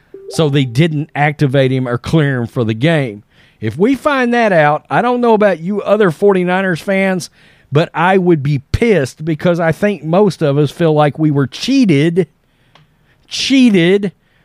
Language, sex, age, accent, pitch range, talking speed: English, male, 40-59, American, 125-165 Hz, 170 wpm